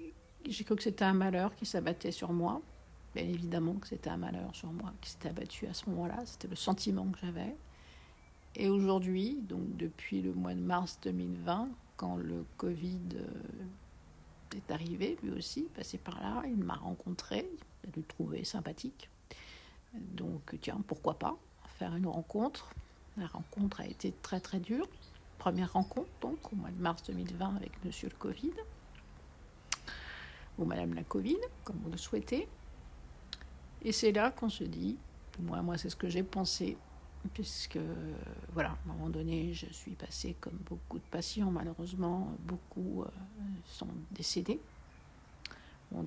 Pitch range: 155-200 Hz